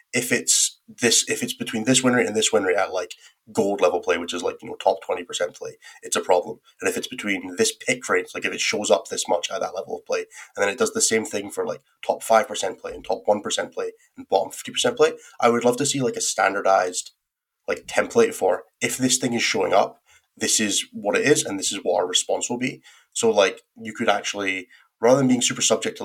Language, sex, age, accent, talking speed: English, male, 20-39, British, 260 wpm